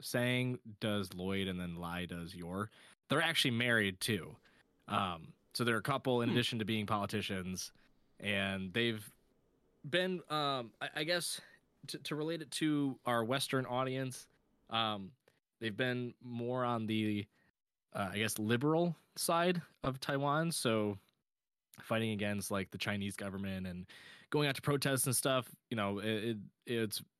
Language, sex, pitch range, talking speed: English, male, 100-135 Hz, 150 wpm